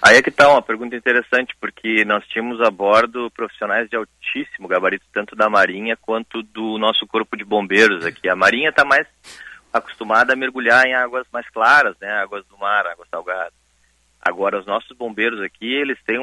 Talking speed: 185 wpm